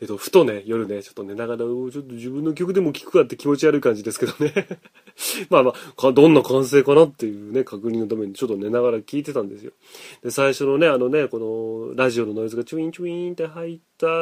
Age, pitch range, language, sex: 30-49, 115-165 Hz, Japanese, male